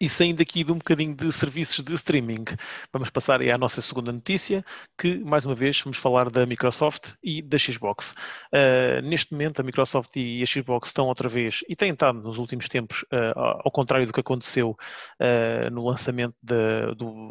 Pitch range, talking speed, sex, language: 125-145 Hz, 195 wpm, male, English